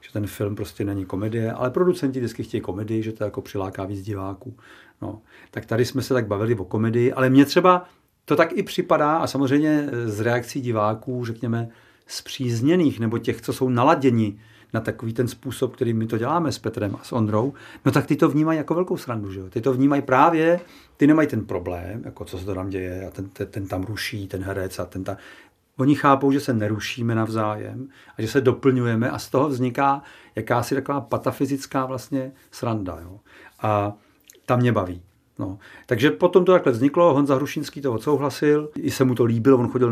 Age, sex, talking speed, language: 40-59, male, 200 wpm, Czech